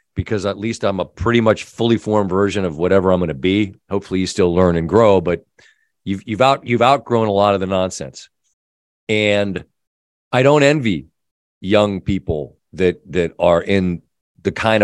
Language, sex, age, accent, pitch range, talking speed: English, male, 40-59, American, 90-115 Hz, 180 wpm